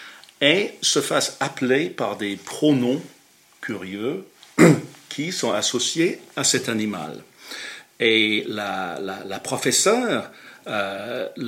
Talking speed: 105 wpm